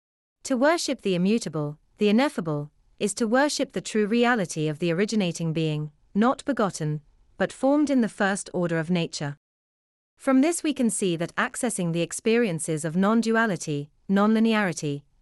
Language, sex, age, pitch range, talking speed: English, female, 30-49, 160-230 Hz, 150 wpm